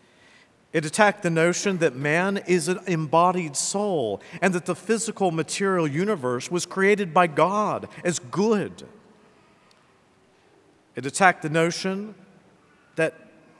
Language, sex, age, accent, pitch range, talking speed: English, male, 50-69, American, 155-195 Hz, 120 wpm